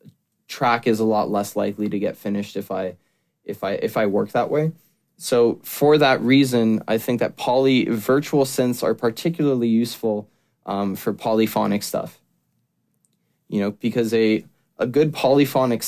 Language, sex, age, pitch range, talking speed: English, male, 20-39, 105-120 Hz, 160 wpm